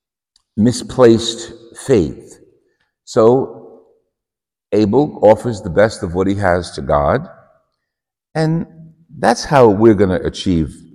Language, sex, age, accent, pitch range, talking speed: English, male, 60-79, American, 75-100 Hz, 110 wpm